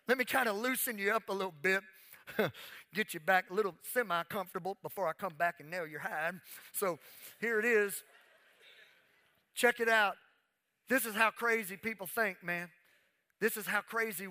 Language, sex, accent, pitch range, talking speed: English, male, American, 140-195 Hz, 175 wpm